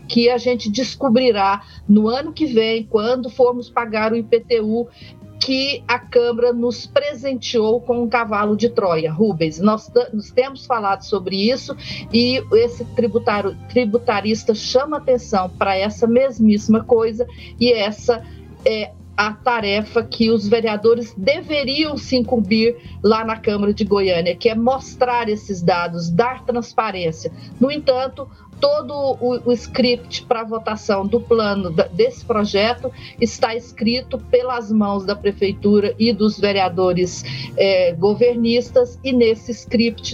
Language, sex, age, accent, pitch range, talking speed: Portuguese, female, 40-59, Brazilian, 210-245 Hz, 130 wpm